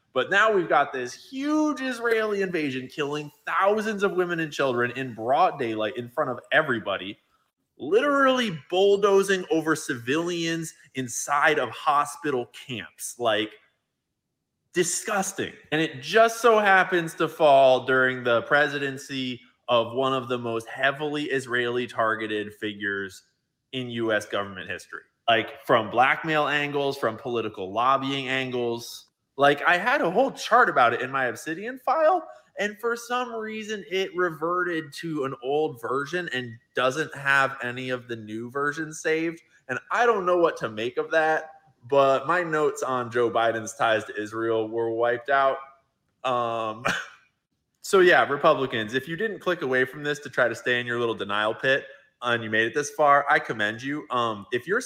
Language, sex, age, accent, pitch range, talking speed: English, male, 20-39, American, 120-175 Hz, 160 wpm